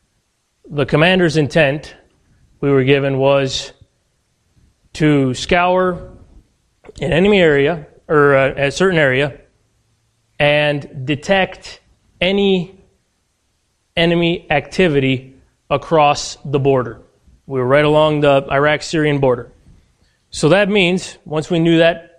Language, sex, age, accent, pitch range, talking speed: English, male, 30-49, American, 140-165 Hz, 105 wpm